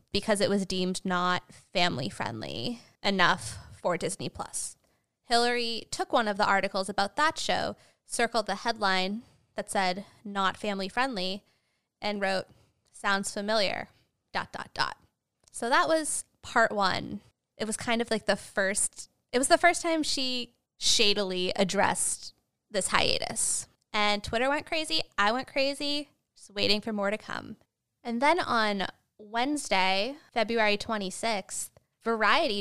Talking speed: 140 wpm